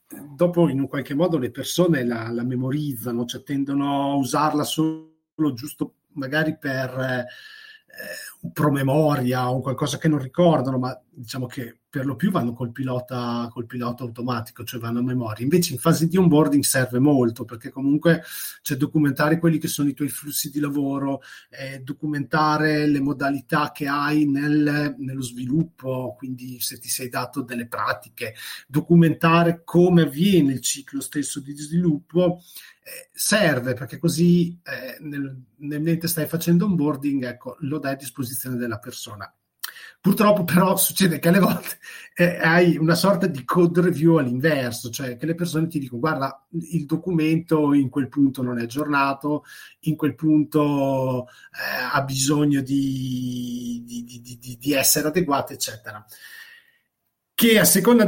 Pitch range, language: 130-170 Hz, Italian